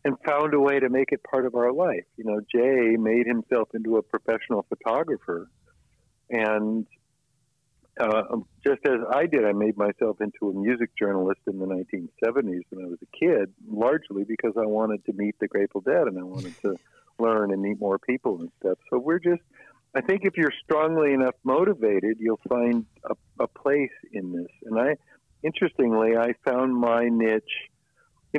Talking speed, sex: 180 wpm, male